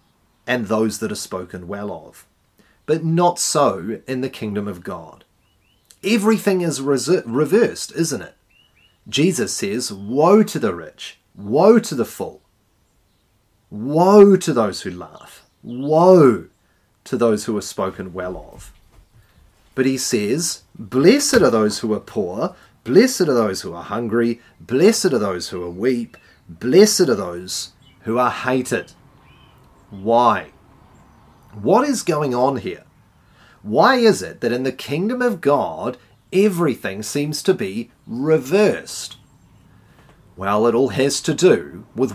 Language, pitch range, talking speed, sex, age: English, 105-165 Hz, 140 wpm, male, 30-49